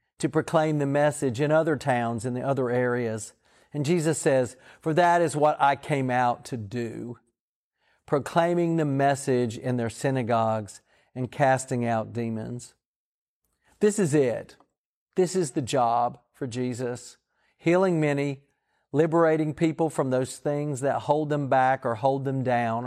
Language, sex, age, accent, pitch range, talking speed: English, male, 40-59, American, 120-155 Hz, 150 wpm